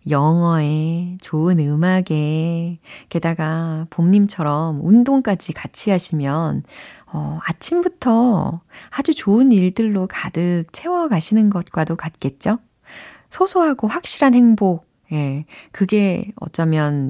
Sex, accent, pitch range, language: female, native, 155-215 Hz, Korean